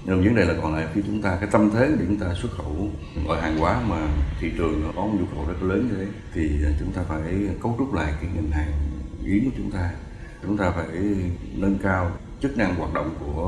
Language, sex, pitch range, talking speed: Vietnamese, male, 80-100 Hz, 235 wpm